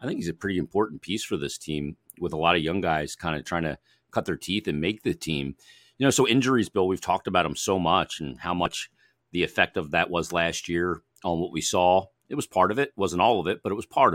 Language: English